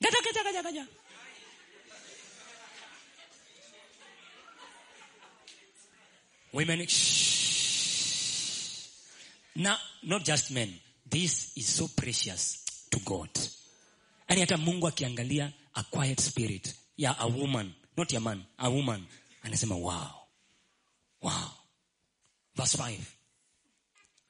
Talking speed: 80 wpm